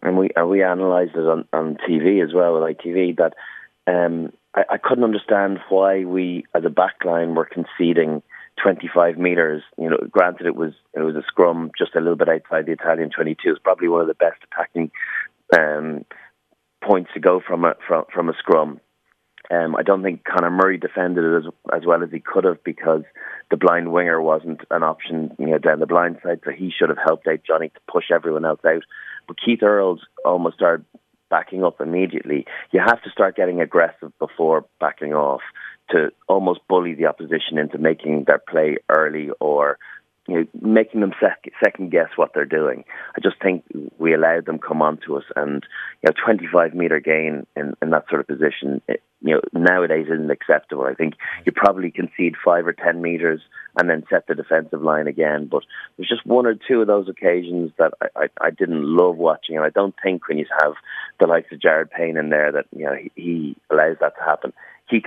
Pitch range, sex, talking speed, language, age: 80-90 Hz, male, 205 wpm, English, 30-49